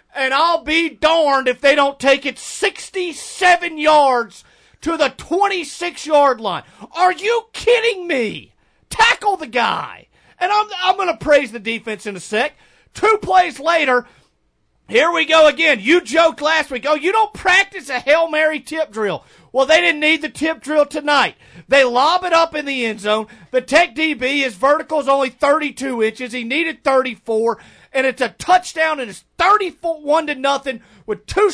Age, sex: 40-59, male